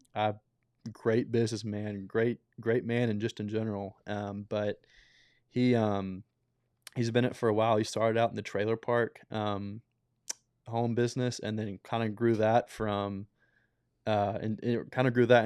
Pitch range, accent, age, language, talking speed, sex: 105-120 Hz, American, 20-39, English, 170 wpm, male